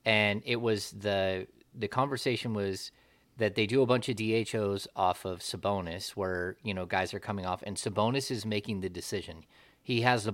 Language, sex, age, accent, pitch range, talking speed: English, male, 30-49, American, 100-120 Hz, 190 wpm